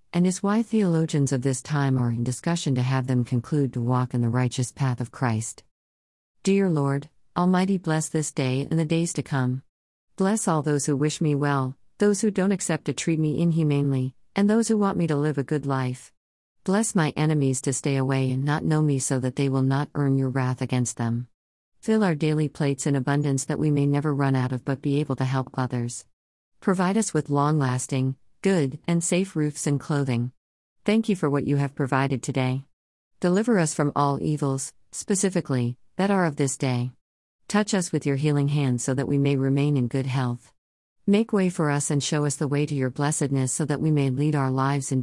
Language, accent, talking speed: English, American, 215 wpm